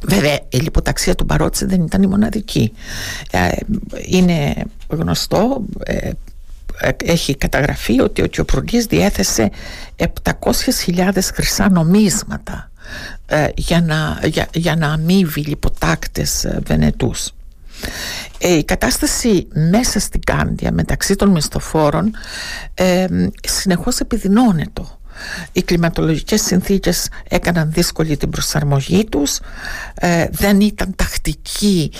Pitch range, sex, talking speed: 155-205 Hz, female, 90 wpm